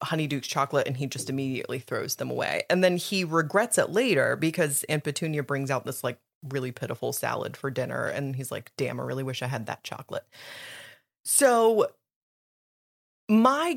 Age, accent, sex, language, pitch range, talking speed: 30-49, American, female, English, 140-200 Hz, 175 wpm